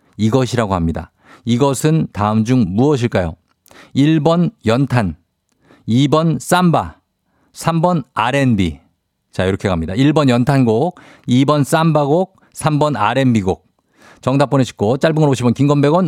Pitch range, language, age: 110-155 Hz, Korean, 50-69